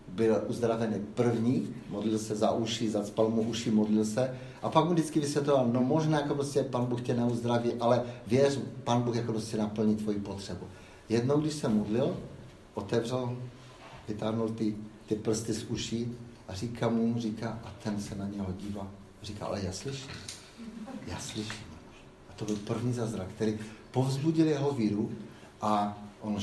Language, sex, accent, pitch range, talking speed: Czech, male, native, 105-120 Hz, 165 wpm